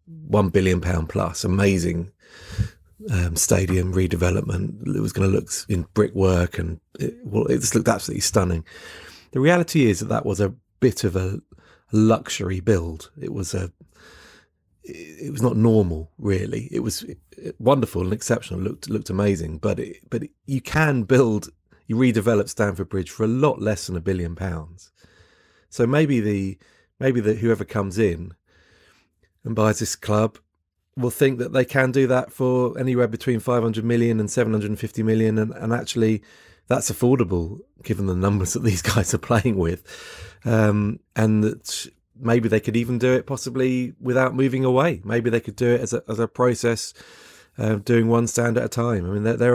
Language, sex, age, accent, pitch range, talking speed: English, male, 30-49, British, 95-120 Hz, 175 wpm